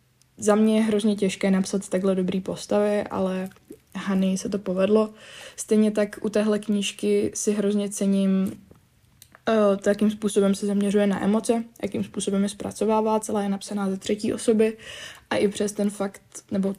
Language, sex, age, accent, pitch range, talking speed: Czech, female, 20-39, native, 195-215 Hz, 160 wpm